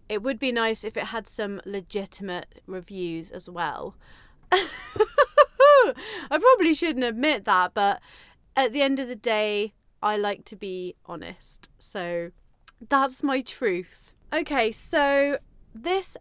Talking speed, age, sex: 135 wpm, 30-49, female